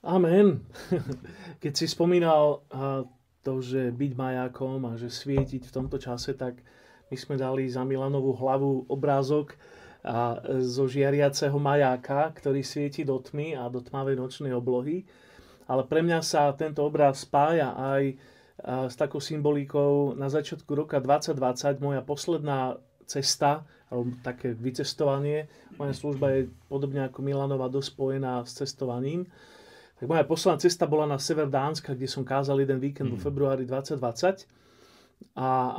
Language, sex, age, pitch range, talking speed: Slovak, male, 30-49, 130-145 Hz, 135 wpm